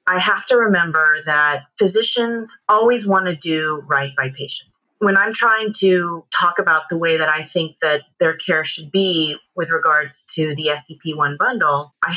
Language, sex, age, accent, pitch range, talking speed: English, female, 30-49, American, 150-195 Hz, 180 wpm